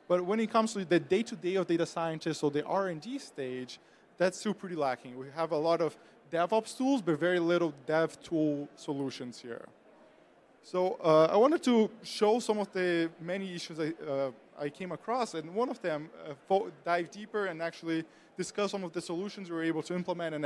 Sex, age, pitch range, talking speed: male, 20-39, 160-195 Hz, 195 wpm